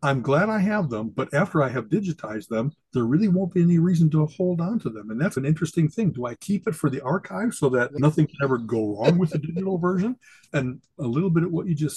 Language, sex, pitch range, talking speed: English, male, 125-160 Hz, 265 wpm